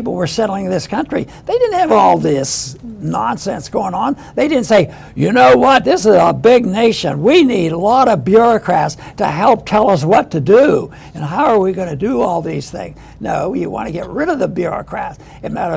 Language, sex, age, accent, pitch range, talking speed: English, male, 60-79, American, 175-225 Hz, 225 wpm